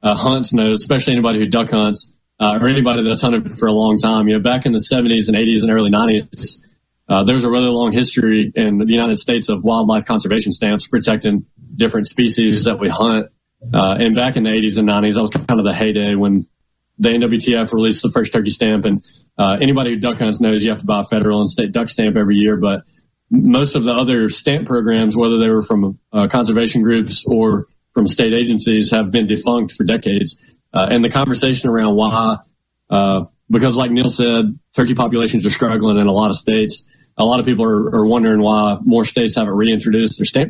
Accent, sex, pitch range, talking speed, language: American, male, 110-125 Hz, 215 wpm, English